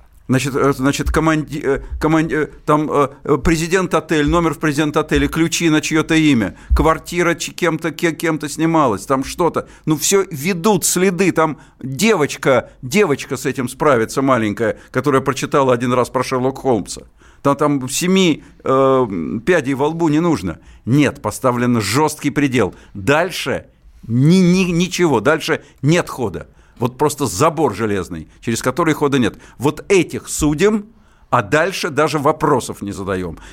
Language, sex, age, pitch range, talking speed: Russian, male, 50-69, 120-160 Hz, 125 wpm